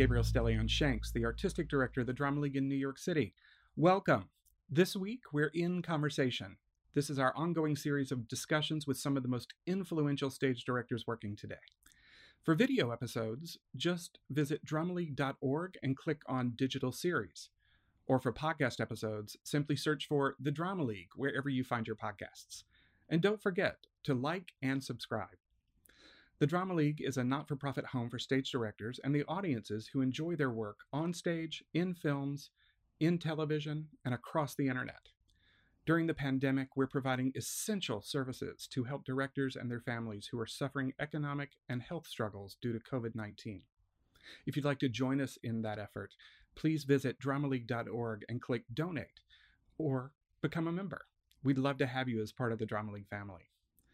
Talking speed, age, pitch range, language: 170 wpm, 40-59, 115-150 Hz, English